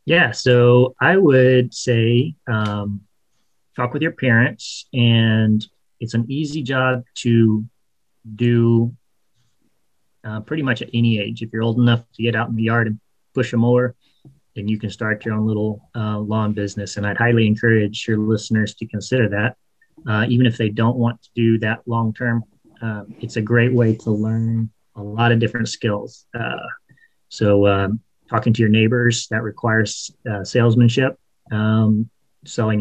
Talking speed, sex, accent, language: 170 wpm, male, American, English